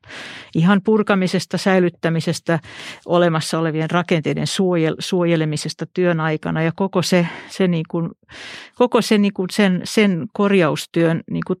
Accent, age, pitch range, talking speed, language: native, 50-69, 165-195 Hz, 120 wpm, Finnish